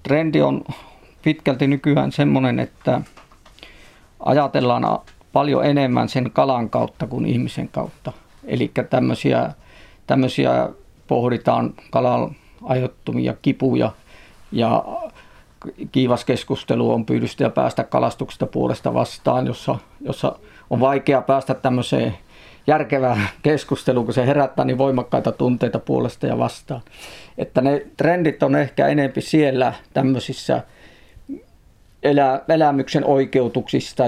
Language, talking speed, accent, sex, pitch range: Finnish, 105 wpm, native, male, 125-140 Hz